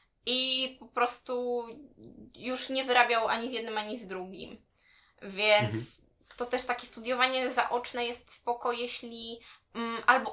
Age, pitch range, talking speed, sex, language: 20-39, 220-250 Hz, 130 wpm, female, Polish